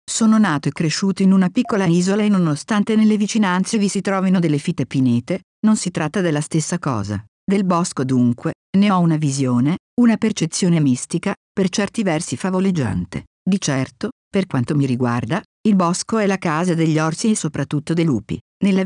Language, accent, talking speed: Italian, native, 180 wpm